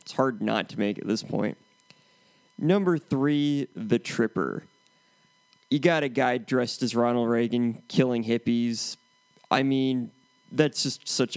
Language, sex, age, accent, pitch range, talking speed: English, male, 20-39, American, 120-150 Hz, 150 wpm